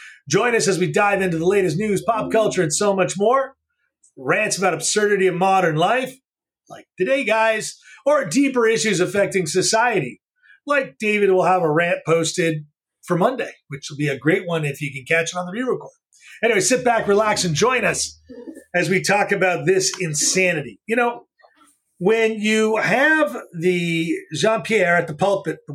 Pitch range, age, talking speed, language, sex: 165-220 Hz, 30-49, 180 wpm, English, male